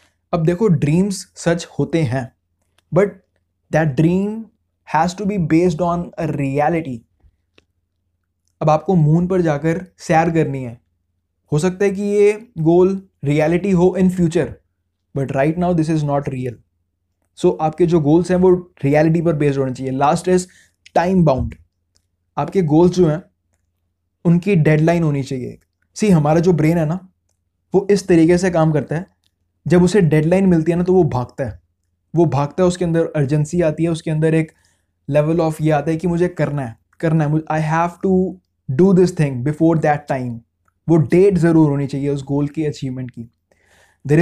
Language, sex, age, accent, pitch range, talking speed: Hindi, male, 20-39, native, 120-175 Hz, 175 wpm